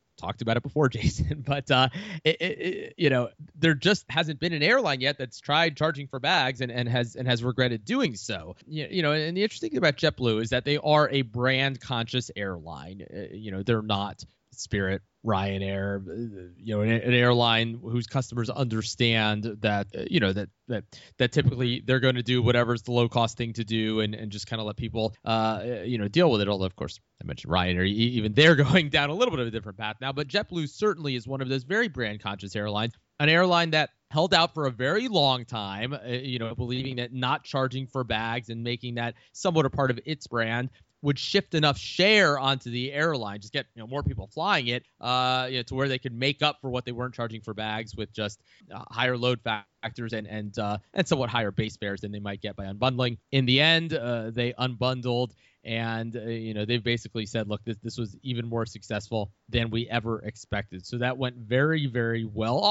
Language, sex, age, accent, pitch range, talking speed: English, male, 20-39, American, 110-140 Hz, 220 wpm